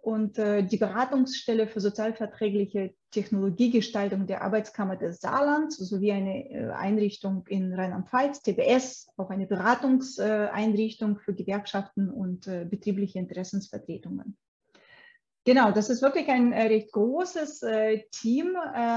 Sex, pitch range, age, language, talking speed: female, 200-245 Hz, 20-39, German, 100 wpm